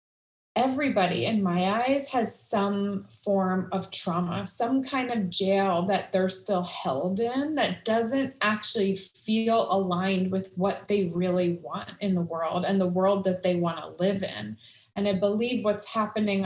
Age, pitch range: 20-39, 190-240 Hz